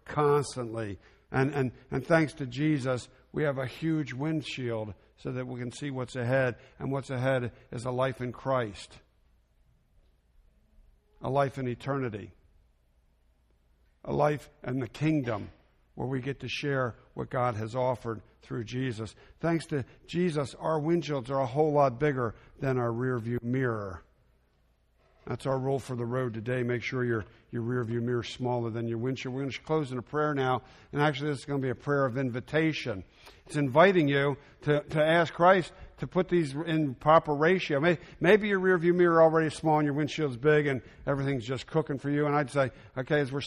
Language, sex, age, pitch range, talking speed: English, male, 60-79, 120-145 Hz, 185 wpm